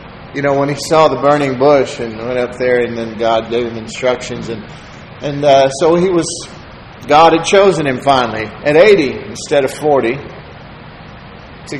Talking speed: 180 wpm